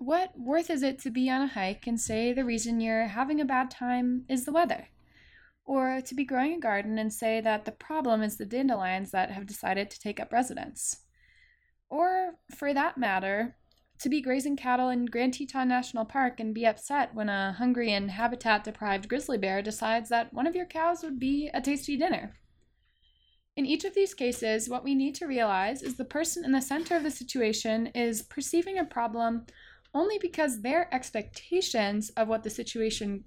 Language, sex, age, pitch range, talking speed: English, female, 20-39, 215-275 Hz, 195 wpm